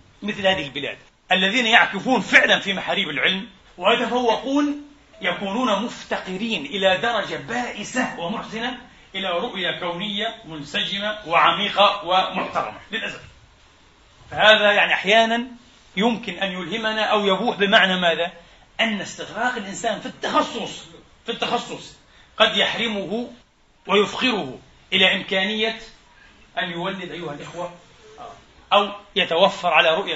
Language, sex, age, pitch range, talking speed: Arabic, male, 40-59, 175-225 Hz, 105 wpm